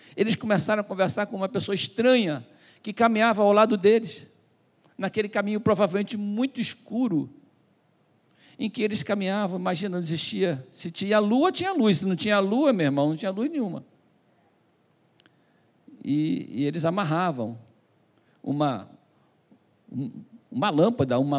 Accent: Brazilian